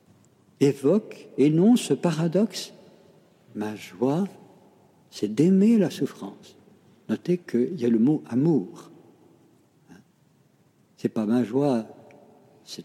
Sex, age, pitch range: male, 60-79, 120-195 Hz